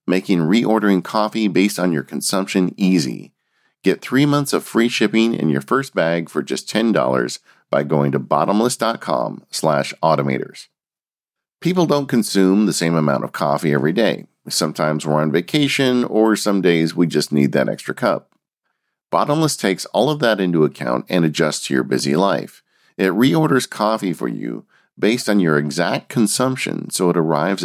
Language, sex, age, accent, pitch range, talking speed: English, male, 50-69, American, 80-110 Hz, 165 wpm